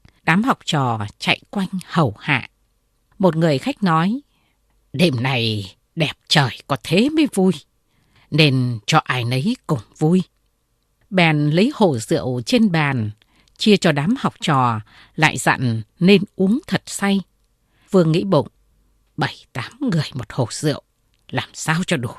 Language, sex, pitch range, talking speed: Vietnamese, female, 125-200 Hz, 145 wpm